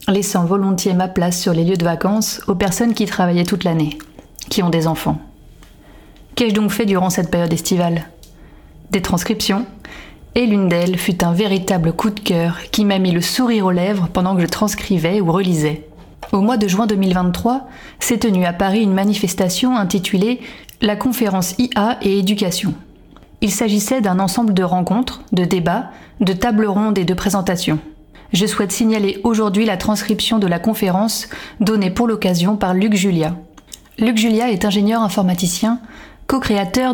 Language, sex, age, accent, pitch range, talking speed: French, female, 30-49, French, 185-225 Hz, 170 wpm